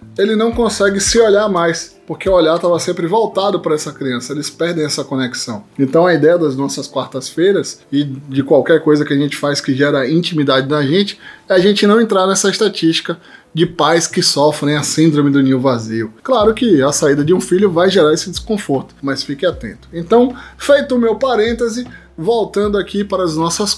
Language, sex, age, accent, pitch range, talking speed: Portuguese, male, 20-39, Brazilian, 155-220 Hz, 195 wpm